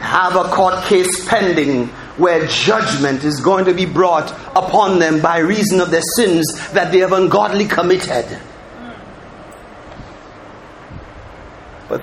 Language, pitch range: English, 200-310 Hz